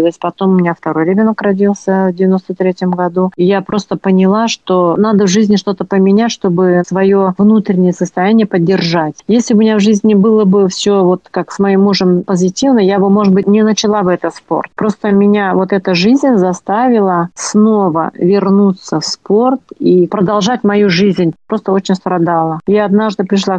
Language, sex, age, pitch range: Russian, female, 40-59, 185-210 Hz